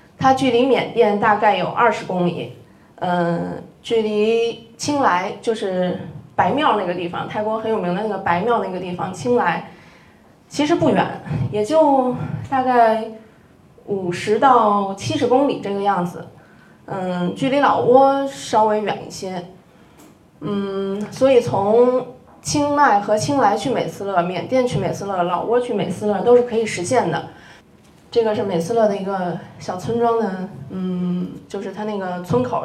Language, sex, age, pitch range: Chinese, female, 20-39, 180-245 Hz